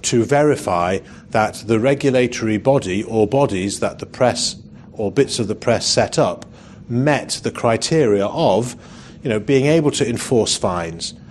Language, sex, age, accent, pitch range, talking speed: English, male, 40-59, British, 100-125 Hz, 155 wpm